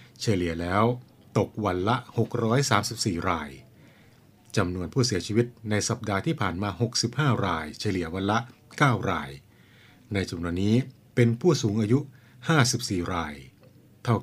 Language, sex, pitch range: Thai, male, 100-120 Hz